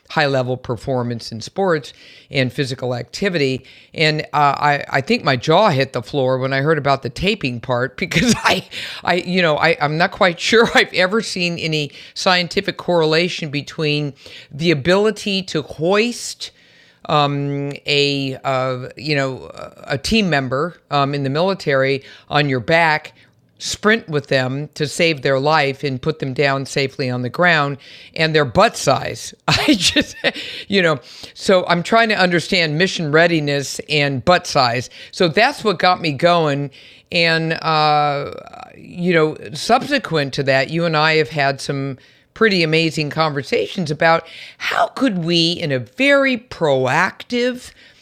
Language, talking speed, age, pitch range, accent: English, 155 wpm, 50-69, 135-175 Hz, American